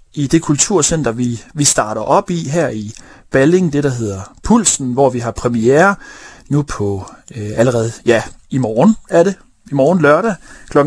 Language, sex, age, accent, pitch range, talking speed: Danish, male, 30-49, native, 140-185 Hz, 175 wpm